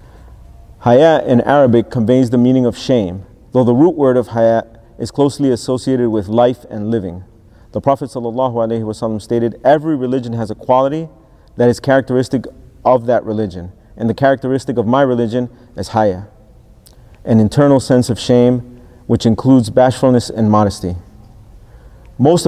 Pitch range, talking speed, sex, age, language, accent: 110-125 Hz, 145 wpm, male, 40-59, English, American